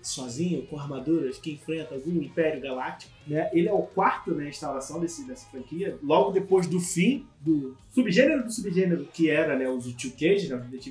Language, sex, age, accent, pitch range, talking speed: Portuguese, male, 20-39, Brazilian, 155-225 Hz, 195 wpm